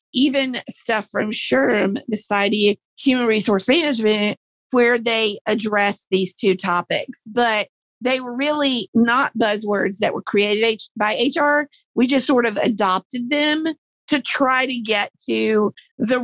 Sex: female